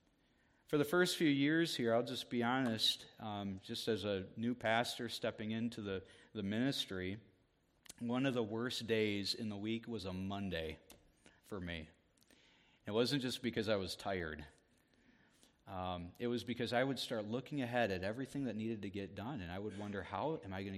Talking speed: 190 wpm